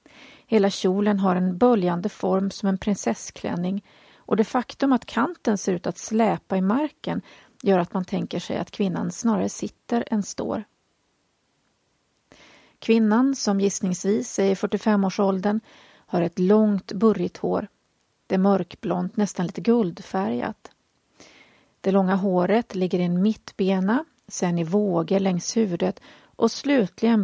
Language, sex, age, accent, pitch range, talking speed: Swedish, female, 40-59, native, 190-225 Hz, 135 wpm